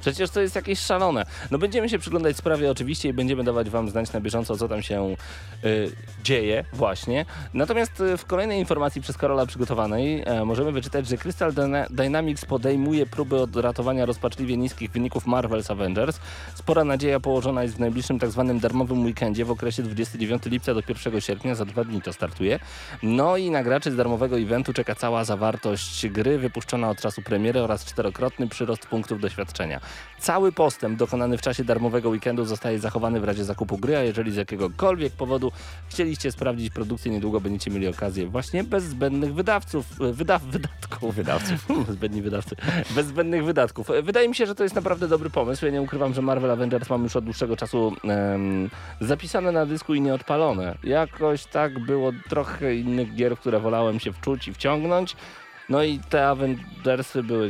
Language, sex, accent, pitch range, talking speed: Polish, male, native, 110-140 Hz, 170 wpm